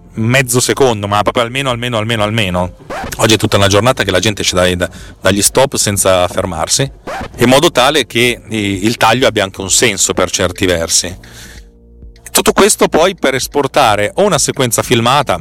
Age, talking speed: 40-59, 170 wpm